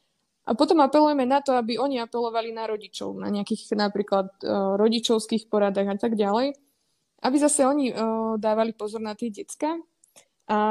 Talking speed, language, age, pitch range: 150 wpm, Slovak, 20-39, 210-250 Hz